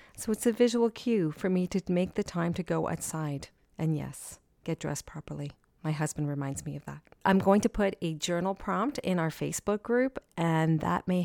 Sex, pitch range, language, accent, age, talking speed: female, 155-200 Hz, English, American, 40-59, 210 wpm